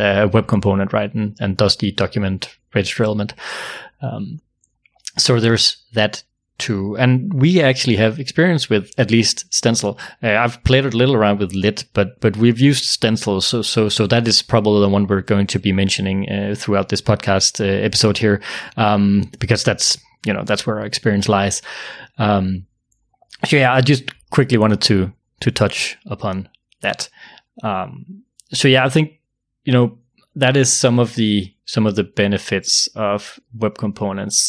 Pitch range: 100-125 Hz